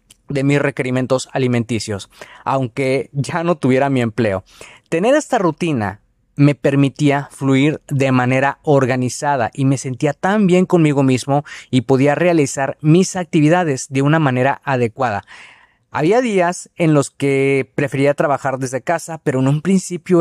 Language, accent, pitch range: Spanish, Mexican, 130-165 Hz